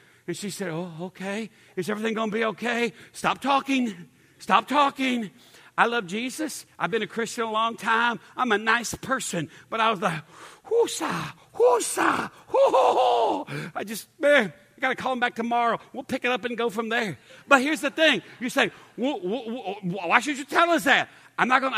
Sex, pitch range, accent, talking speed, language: male, 190-255 Hz, American, 185 wpm, English